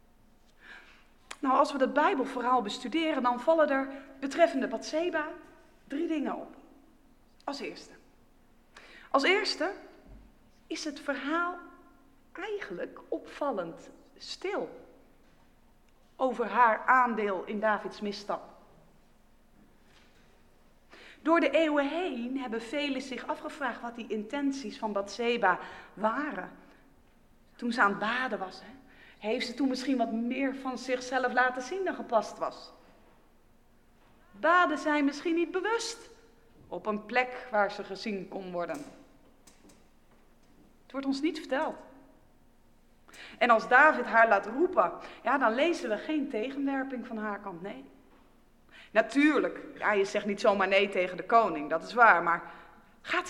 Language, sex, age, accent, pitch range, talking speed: English, female, 40-59, Dutch, 210-305 Hz, 125 wpm